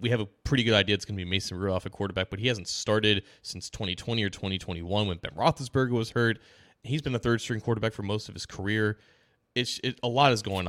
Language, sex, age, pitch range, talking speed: English, male, 20-39, 90-110 Hz, 240 wpm